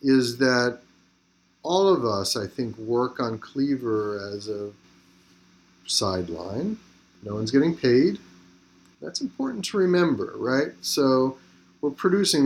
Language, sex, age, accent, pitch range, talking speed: English, male, 40-59, American, 95-135 Hz, 120 wpm